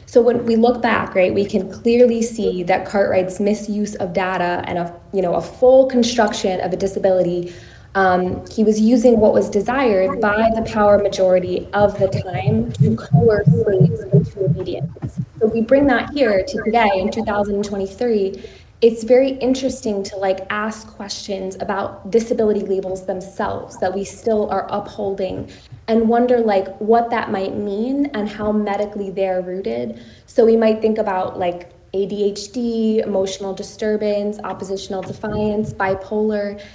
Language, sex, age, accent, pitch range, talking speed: English, female, 20-39, American, 190-225 Hz, 155 wpm